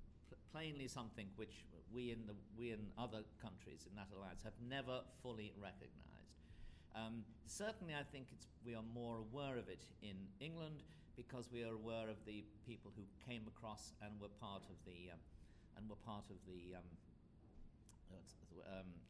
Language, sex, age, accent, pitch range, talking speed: English, male, 50-69, British, 95-115 Hz, 165 wpm